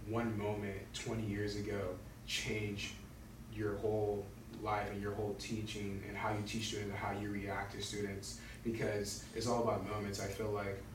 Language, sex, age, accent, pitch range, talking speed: English, male, 20-39, American, 105-115 Hz, 175 wpm